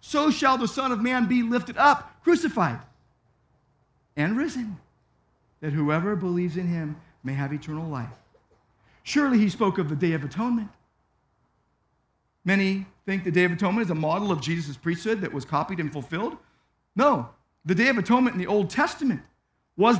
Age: 50-69